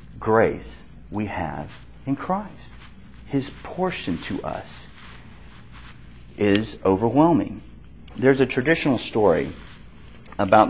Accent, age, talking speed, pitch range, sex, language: American, 40-59, 90 wpm, 95-135 Hz, male, English